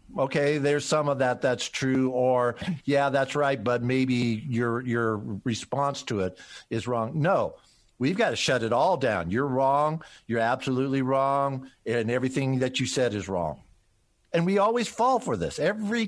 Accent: American